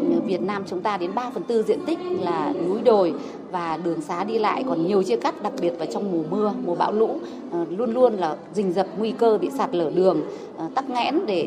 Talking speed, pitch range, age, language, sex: 235 wpm, 175-230 Hz, 20-39, Vietnamese, female